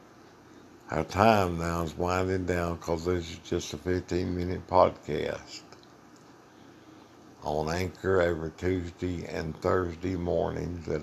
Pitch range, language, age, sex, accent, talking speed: 80-90 Hz, English, 60-79, male, American, 115 wpm